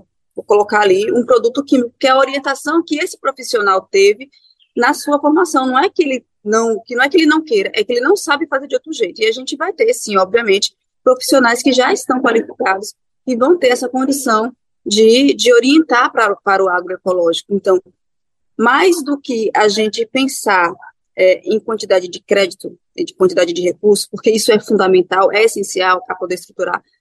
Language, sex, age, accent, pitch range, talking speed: Portuguese, female, 20-39, Brazilian, 210-290 Hz, 190 wpm